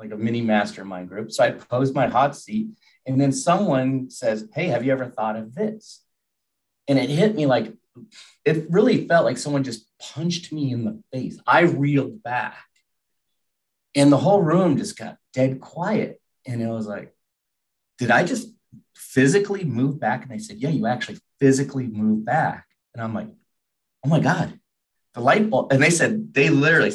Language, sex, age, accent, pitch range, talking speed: English, male, 30-49, American, 110-145 Hz, 185 wpm